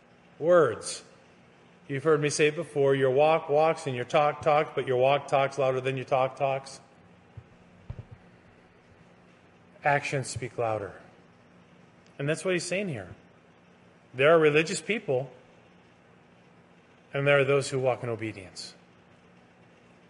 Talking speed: 130 wpm